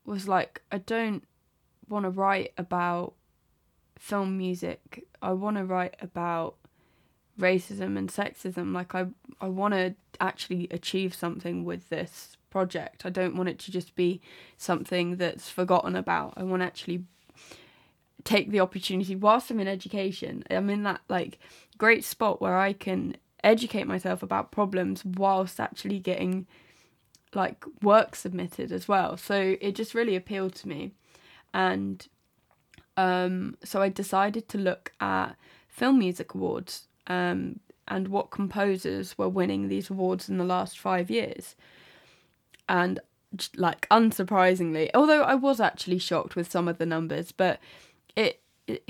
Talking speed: 145 wpm